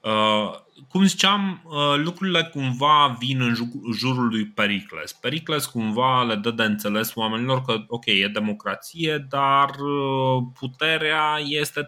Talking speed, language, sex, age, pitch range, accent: 130 wpm, Romanian, male, 20-39, 105-140 Hz, native